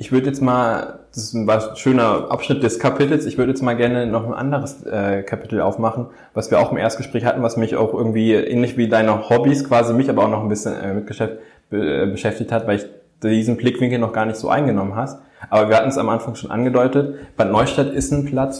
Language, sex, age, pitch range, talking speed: German, male, 10-29, 105-125 Hz, 220 wpm